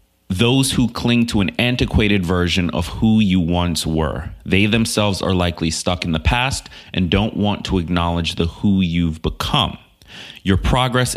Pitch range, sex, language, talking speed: 85-110 Hz, male, English, 165 wpm